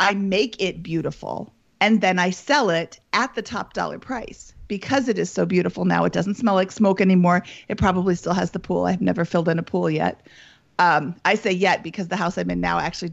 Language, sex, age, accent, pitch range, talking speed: English, female, 40-59, American, 180-220 Hz, 230 wpm